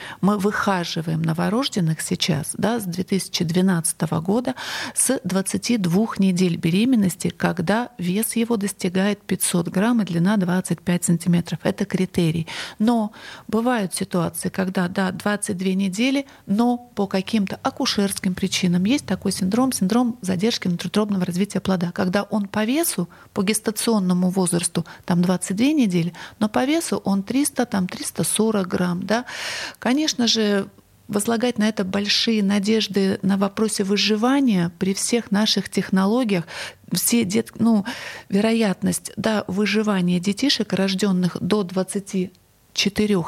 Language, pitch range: Russian, 185-220 Hz